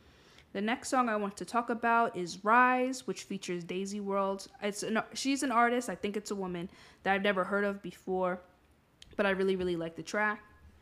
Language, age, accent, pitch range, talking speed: English, 20-39, American, 175-210 Hz, 205 wpm